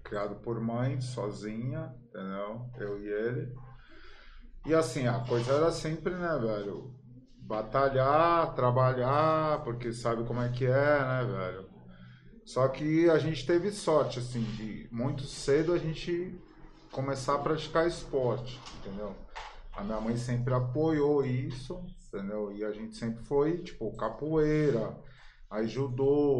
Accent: Brazilian